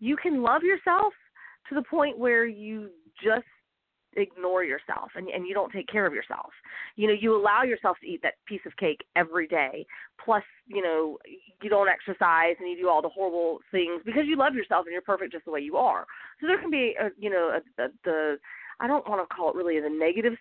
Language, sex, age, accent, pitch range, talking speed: English, female, 30-49, American, 170-245 Hz, 225 wpm